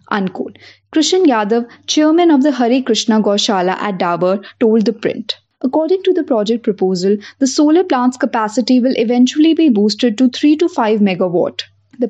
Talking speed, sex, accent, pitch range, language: 160 wpm, female, Indian, 210-275 Hz, English